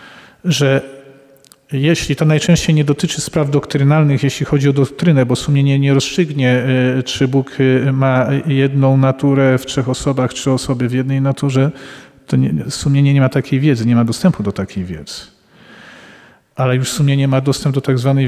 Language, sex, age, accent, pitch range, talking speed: Polish, male, 40-59, native, 130-140 Hz, 160 wpm